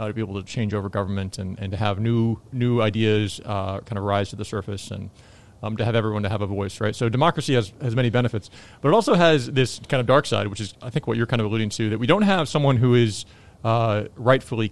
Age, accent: 30-49, American